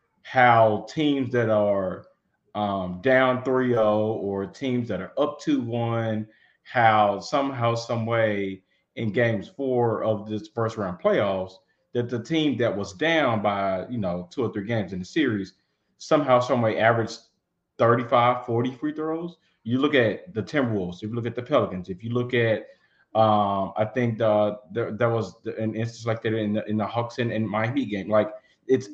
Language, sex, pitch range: English, male, 105-120 Hz